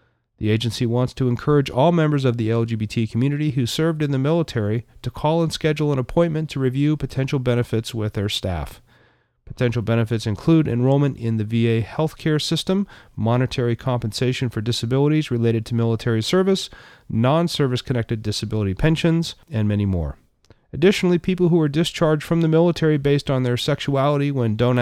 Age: 40-59